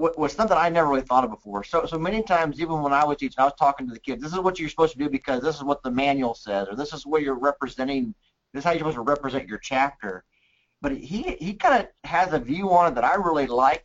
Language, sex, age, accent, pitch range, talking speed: English, male, 40-59, American, 130-160 Hz, 285 wpm